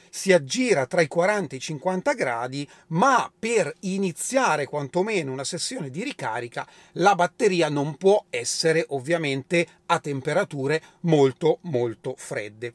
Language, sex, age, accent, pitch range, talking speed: Italian, male, 40-59, native, 150-190 Hz, 130 wpm